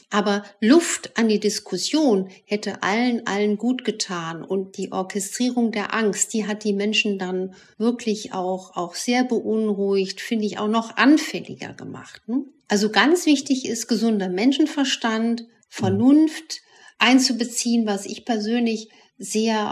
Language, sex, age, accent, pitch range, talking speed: German, female, 50-69, German, 195-235 Hz, 135 wpm